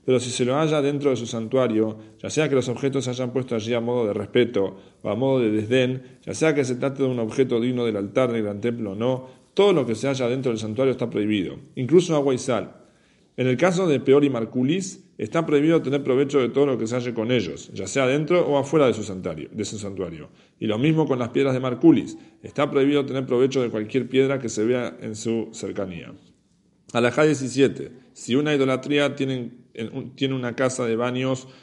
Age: 40-59